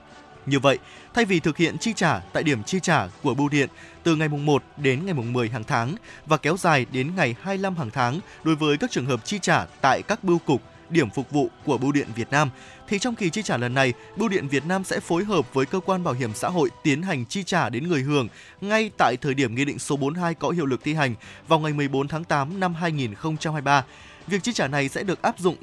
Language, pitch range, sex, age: Vietnamese, 130-175 Hz, male, 20-39